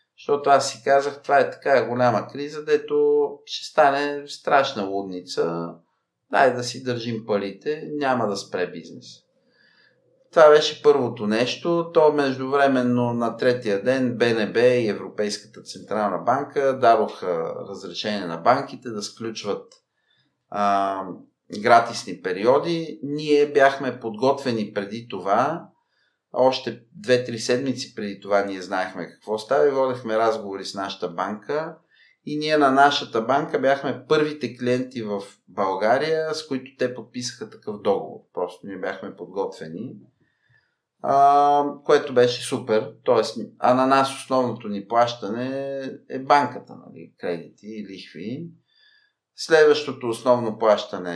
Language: Bulgarian